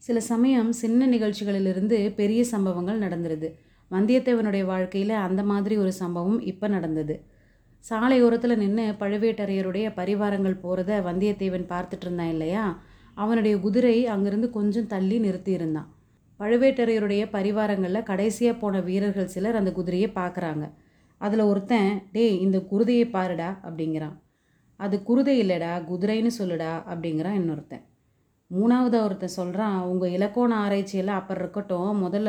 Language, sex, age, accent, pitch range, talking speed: Tamil, female, 30-49, native, 180-215 Hz, 115 wpm